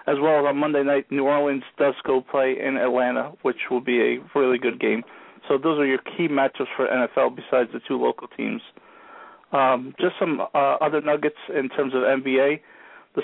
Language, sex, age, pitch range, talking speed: English, male, 40-59, 130-150 Hz, 200 wpm